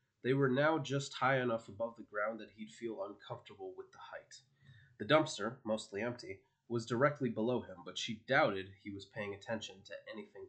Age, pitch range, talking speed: 30-49, 110-140 Hz, 190 wpm